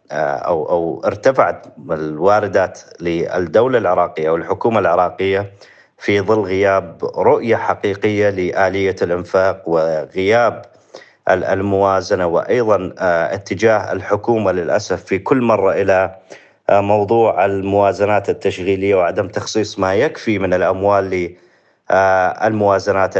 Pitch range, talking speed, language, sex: 95-105 Hz, 95 wpm, Arabic, male